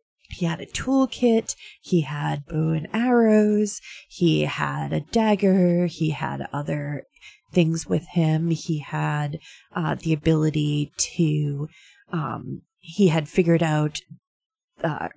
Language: English